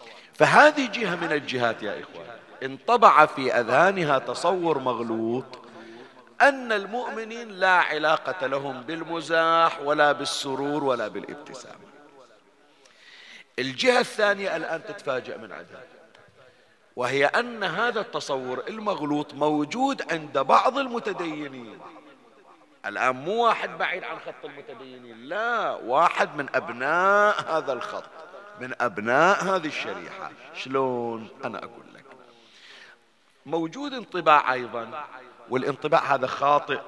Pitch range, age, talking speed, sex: 125-165 Hz, 50-69, 105 wpm, male